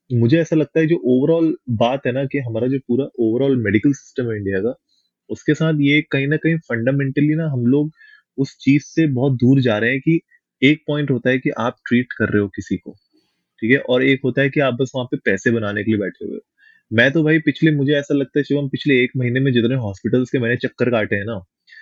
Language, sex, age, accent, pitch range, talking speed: Hindi, male, 20-39, native, 115-140 Hz, 245 wpm